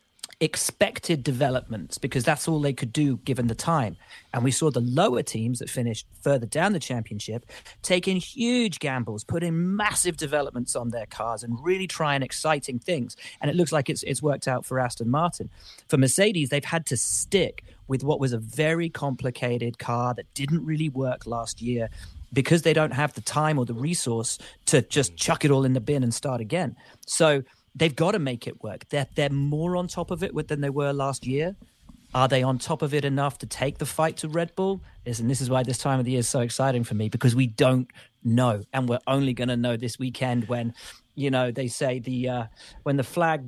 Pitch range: 125-155 Hz